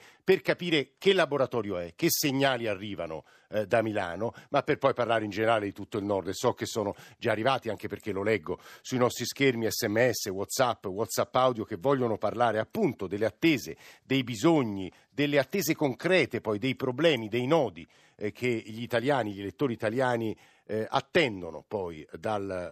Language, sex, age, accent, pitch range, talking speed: Italian, male, 50-69, native, 110-145 Hz, 165 wpm